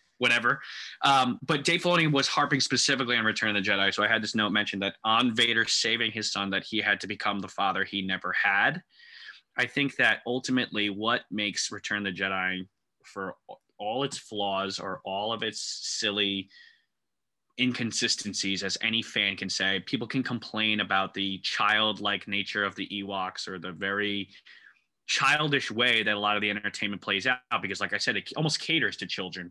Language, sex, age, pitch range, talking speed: English, male, 20-39, 100-120 Hz, 185 wpm